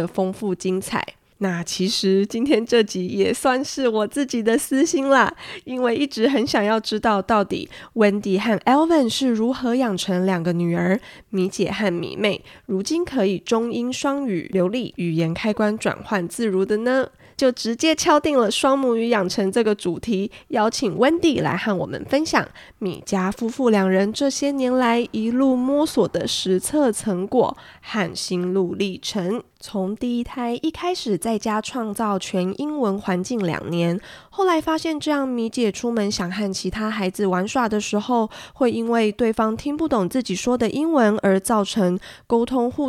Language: Chinese